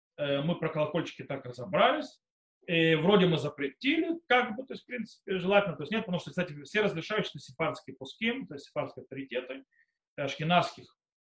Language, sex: Russian, male